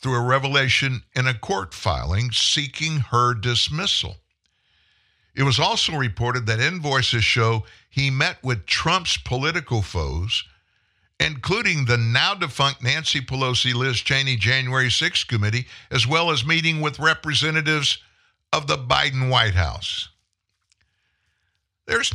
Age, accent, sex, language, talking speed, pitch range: 60-79, American, male, English, 115 wpm, 95-130 Hz